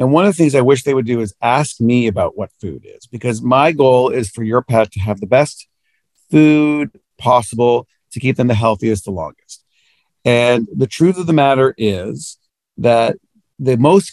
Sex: male